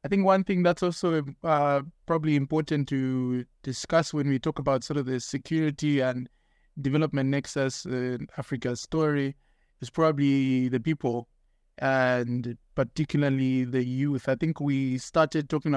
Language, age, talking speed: English, 20-39, 145 wpm